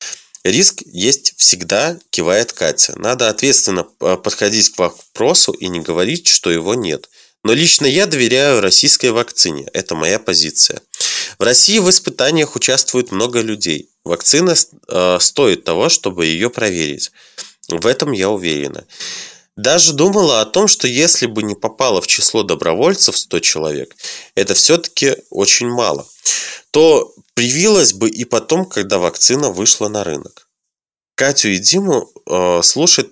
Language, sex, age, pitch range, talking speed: Russian, male, 20-39, 105-160 Hz, 135 wpm